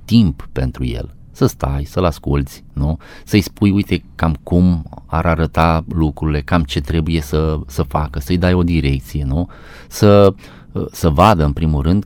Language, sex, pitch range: Romanian, male, 80-105 Hz